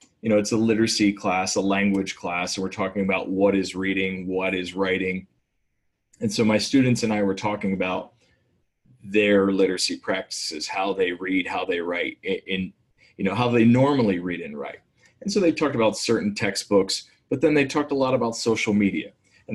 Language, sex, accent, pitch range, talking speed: English, male, American, 95-110 Hz, 195 wpm